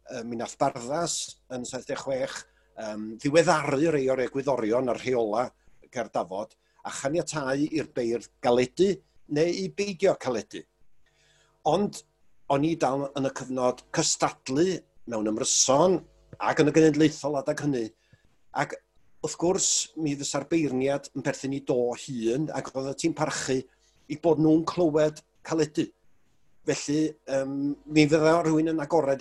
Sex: male